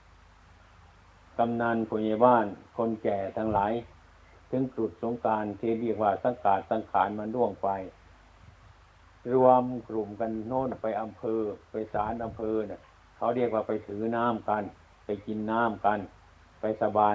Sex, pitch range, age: male, 95-115 Hz, 60-79